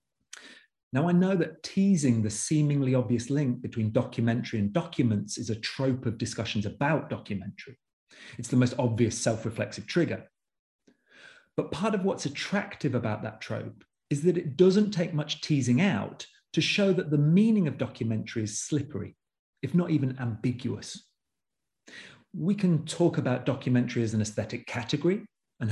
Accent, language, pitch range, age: British, English, 115-150 Hz, 40-59